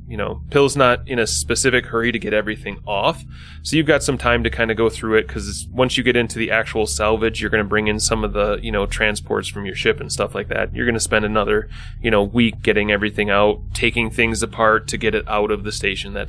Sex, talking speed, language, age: male, 260 wpm, English, 20-39